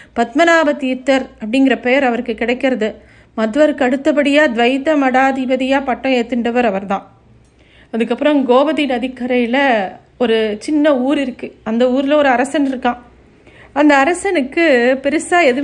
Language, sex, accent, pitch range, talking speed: Tamil, female, native, 245-295 Hz, 110 wpm